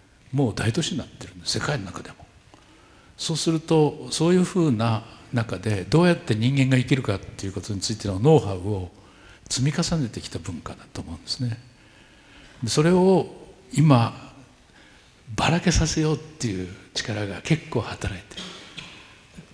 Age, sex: 60-79, male